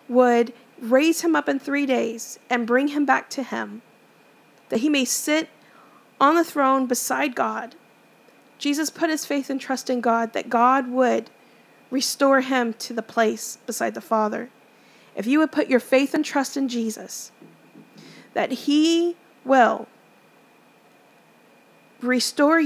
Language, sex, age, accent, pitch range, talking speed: English, female, 40-59, American, 240-295 Hz, 145 wpm